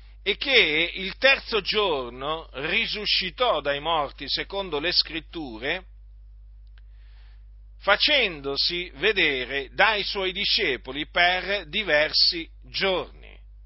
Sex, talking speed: male, 85 wpm